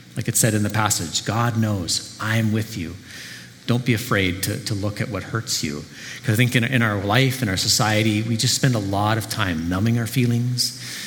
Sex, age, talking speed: male, 40-59, 220 wpm